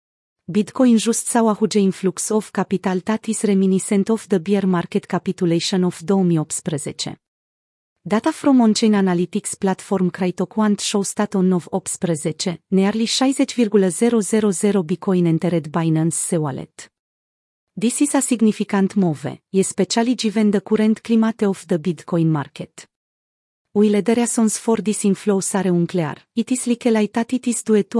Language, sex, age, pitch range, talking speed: Romanian, female, 30-49, 180-220 Hz, 135 wpm